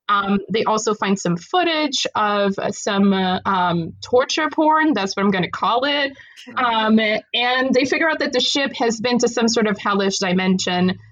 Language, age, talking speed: English, 20-39, 195 wpm